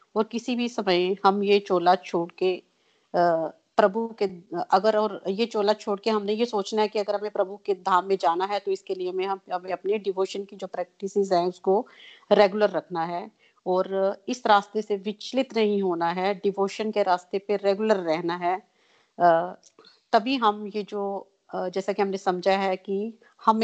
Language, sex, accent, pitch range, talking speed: Hindi, female, native, 185-215 Hz, 180 wpm